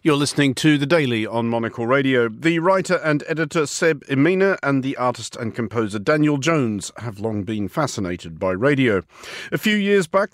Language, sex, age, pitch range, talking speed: English, male, 50-69, 125-170 Hz, 180 wpm